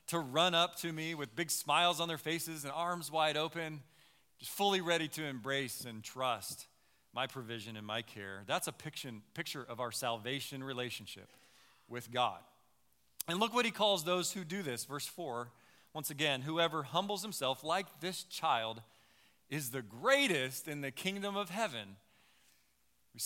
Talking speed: 165 wpm